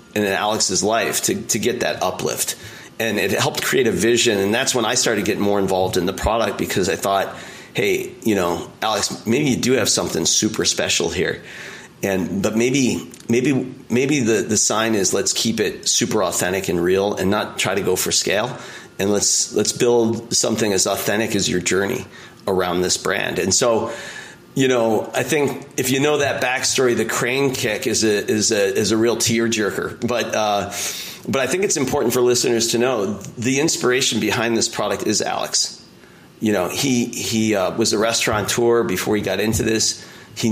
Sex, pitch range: male, 105-120 Hz